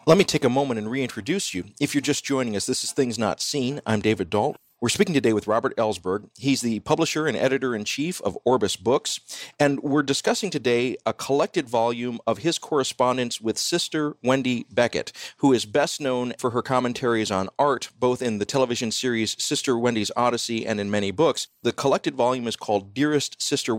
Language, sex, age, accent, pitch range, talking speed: English, male, 40-59, American, 105-135 Hz, 195 wpm